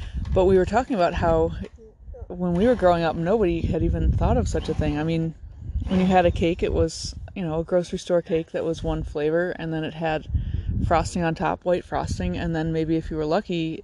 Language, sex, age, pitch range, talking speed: English, female, 20-39, 145-175 Hz, 235 wpm